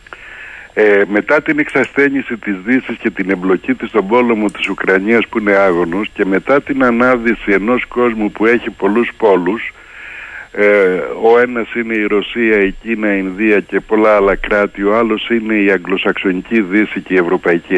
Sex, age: male, 60-79